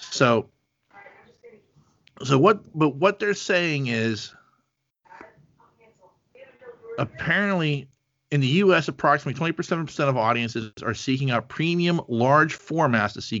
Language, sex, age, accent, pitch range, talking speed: English, male, 40-59, American, 115-150 Hz, 110 wpm